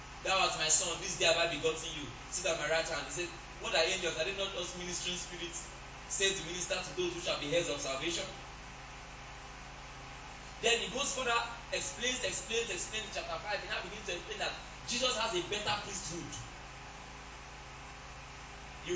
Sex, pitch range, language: male, 145-210 Hz, English